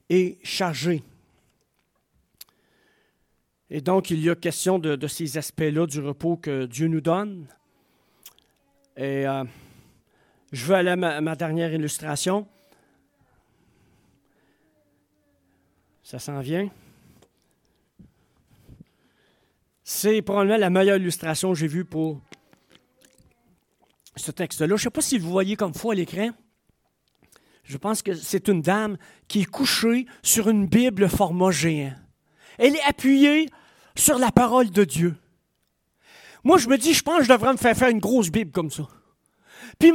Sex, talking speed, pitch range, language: male, 140 wpm, 160-245 Hz, French